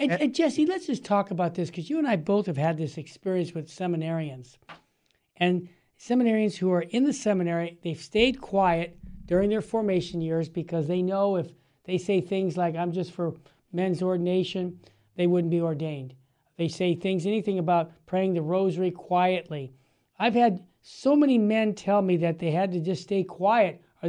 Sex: male